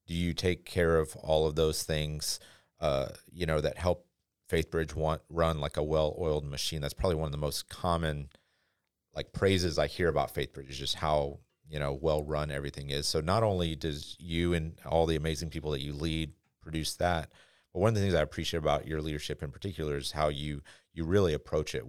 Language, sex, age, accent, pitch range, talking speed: English, male, 40-59, American, 75-90 Hz, 215 wpm